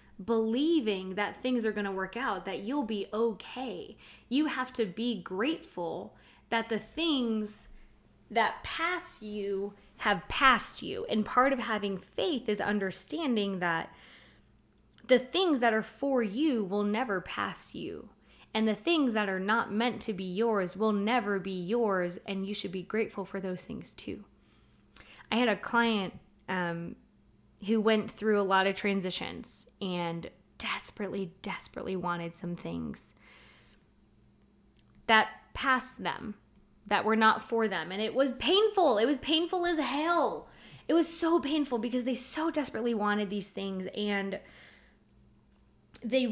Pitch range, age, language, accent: 195-255 Hz, 20-39, English, American